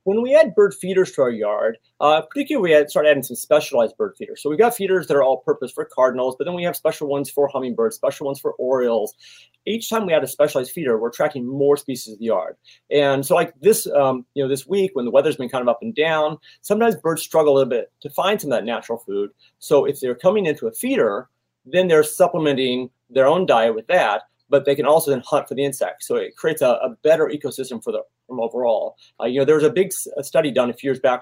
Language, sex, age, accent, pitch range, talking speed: English, male, 30-49, American, 130-185 Hz, 245 wpm